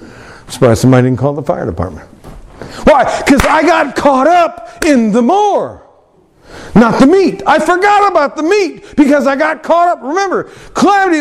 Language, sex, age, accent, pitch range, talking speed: English, male, 50-69, American, 215-330 Hz, 170 wpm